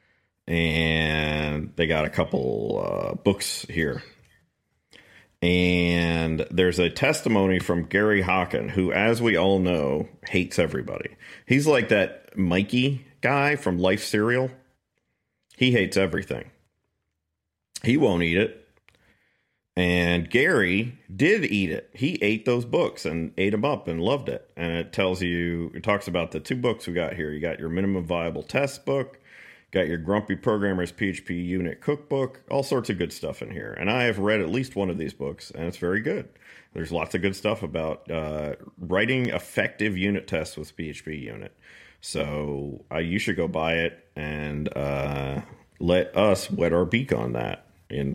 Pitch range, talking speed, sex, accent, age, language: 80-110 Hz, 165 wpm, male, American, 40-59, English